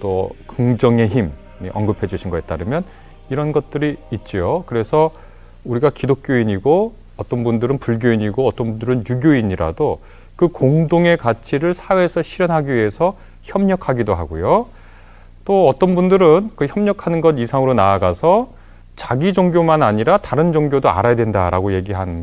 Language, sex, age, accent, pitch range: Korean, male, 30-49, native, 105-170 Hz